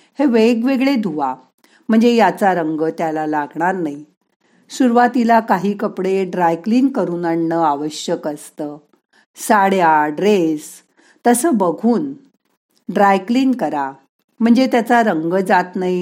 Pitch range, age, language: 170-235 Hz, 50-69, Marathi